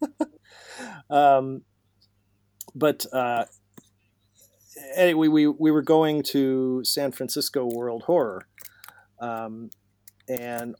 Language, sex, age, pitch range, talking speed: English, male, 40-59, 105-135 Hz, 90 wpm